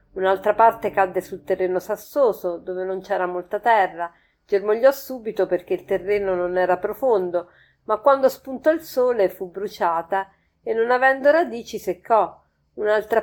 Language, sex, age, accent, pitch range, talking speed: Italian, female, 40-59, native, 185-235 Hz, 145 wpm